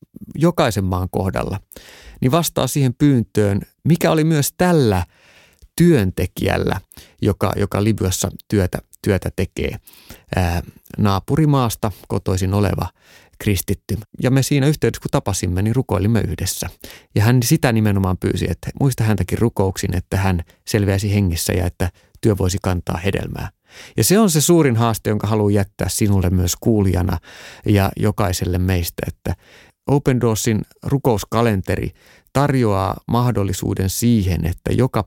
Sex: male